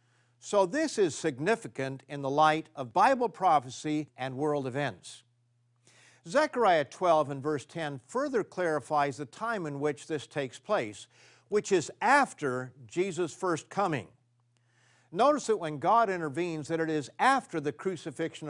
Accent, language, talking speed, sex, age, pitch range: American, English, 145 wpm, male, 50-69, 130-185 Hz